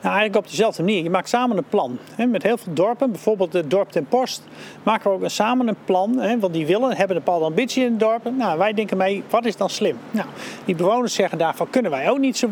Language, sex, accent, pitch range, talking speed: Dutch, male, Dutch, 180-235 Hz, 240 wpm